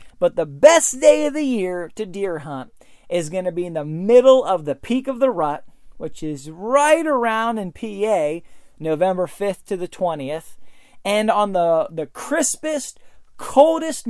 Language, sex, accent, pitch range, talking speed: English, male, American, 155-210 Hz, 170 wpm